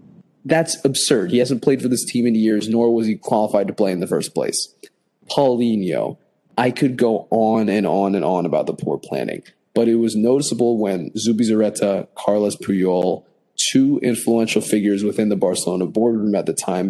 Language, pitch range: English, 100-120 Hz